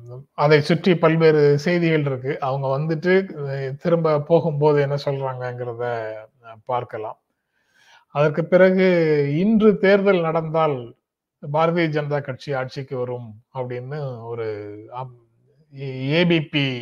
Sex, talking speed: male, 95 wpm